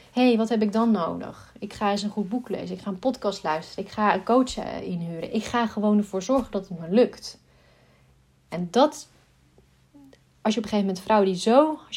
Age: 30-49